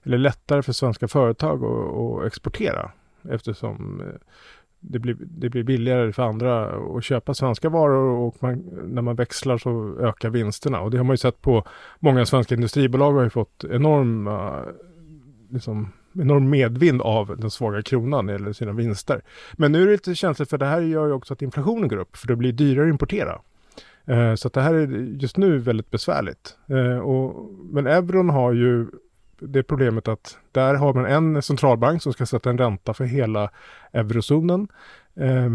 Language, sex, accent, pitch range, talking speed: Swedish, male, Norwegian, 115-145 Hz, 175 wpm